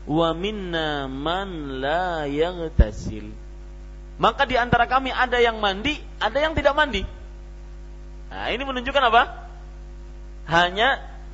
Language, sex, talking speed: Malay, male, 100 wpm